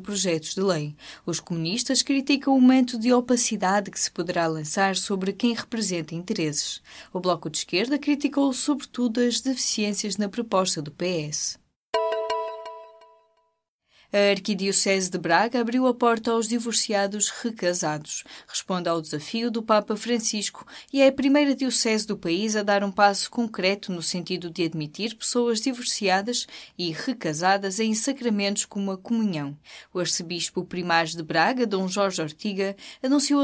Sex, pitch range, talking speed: female, 170-240 Hz, 145 wpm